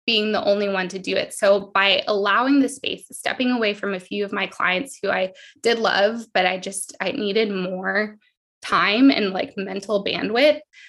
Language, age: English, 20-39